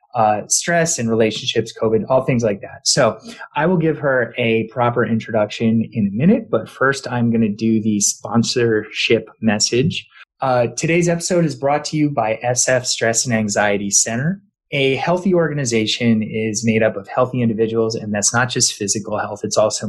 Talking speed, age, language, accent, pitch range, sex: 180 wpm, 30-49, English, American, 110-140 Hz, male